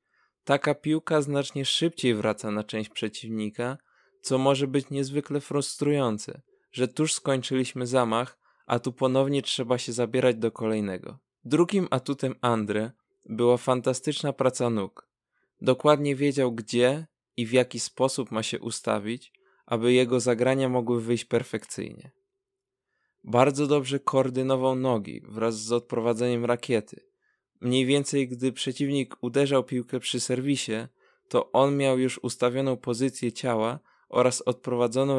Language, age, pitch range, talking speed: Polish, 20-39, 120-140 Hz, 125 wpm